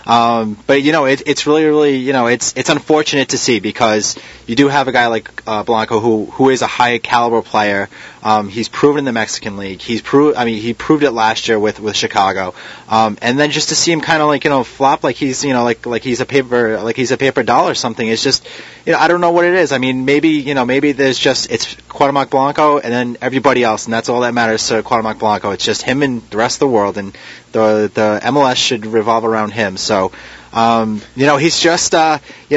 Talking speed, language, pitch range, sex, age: 250 wpm, English, 115-145 Hz, male, 30-49